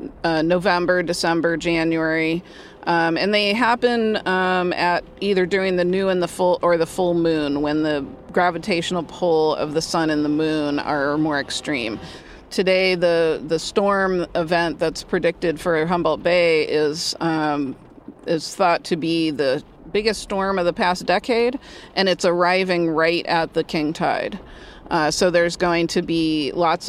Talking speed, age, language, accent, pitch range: 160 wpm, 30-49, English, American, 165-190 Hz